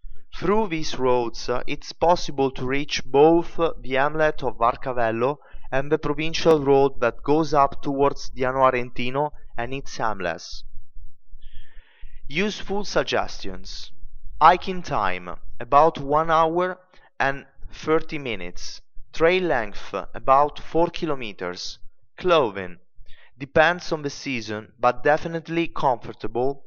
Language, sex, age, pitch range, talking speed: English, male, 30-49, 115-160 Hz, 110 wpm